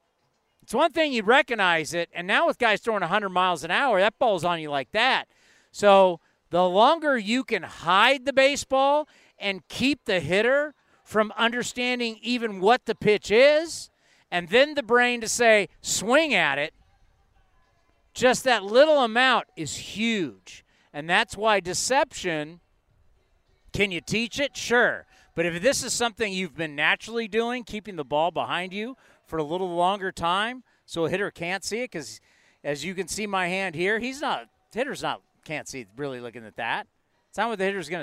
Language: English